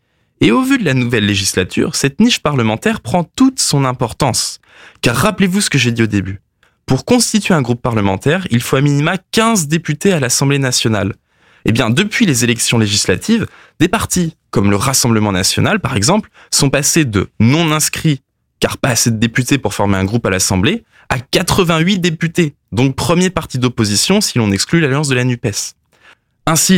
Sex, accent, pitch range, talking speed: male, French, 110-160 Hz, 180 wpm